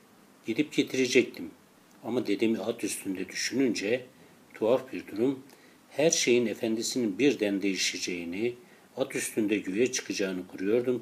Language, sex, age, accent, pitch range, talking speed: Turkish, male, 60-79, native, 95-125 Hz, 110 wpm